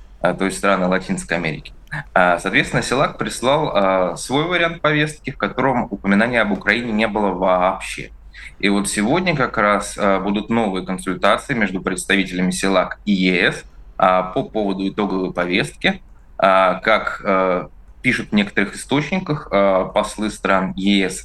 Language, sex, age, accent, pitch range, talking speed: Russian, male, 20-39, native, 95-105 Hz, 125 wpm